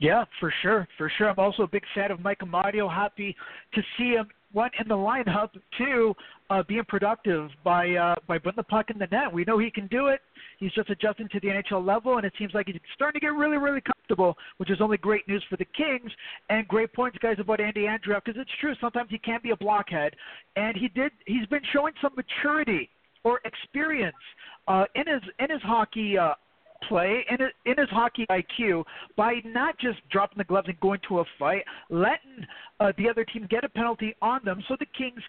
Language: English